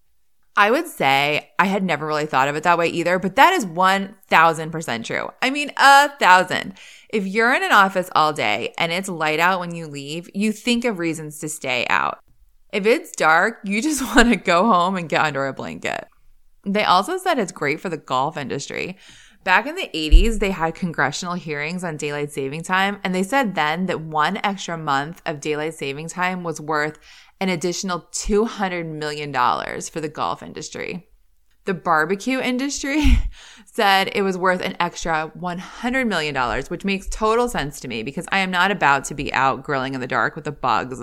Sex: female